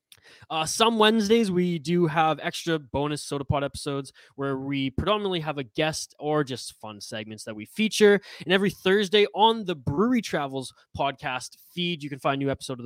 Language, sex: English, male